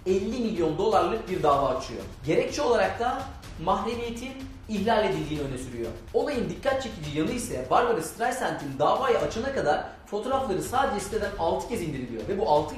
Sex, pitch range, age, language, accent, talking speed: male, 150-220 Hz, 40-59, Turkish, native, 155 wpm